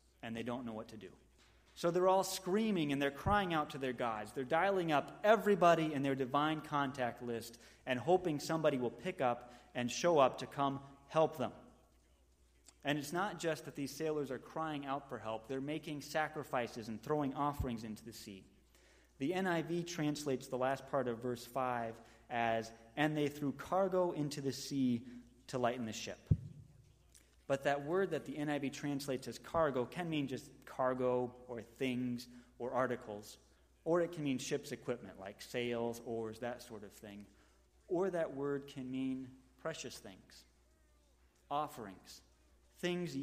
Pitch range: 115-150 Hz